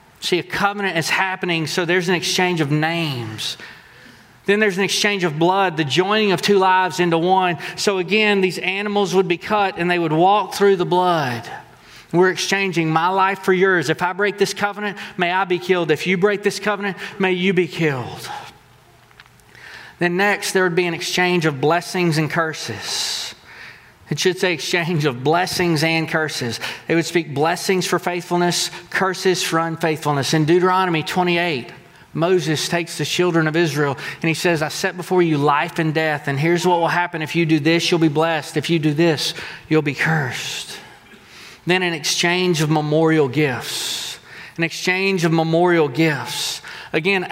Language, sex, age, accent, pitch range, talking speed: English, male, 30-49, American, 160-185 Hz, 180 wpm